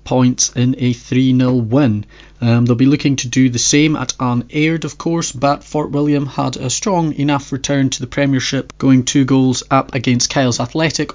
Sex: male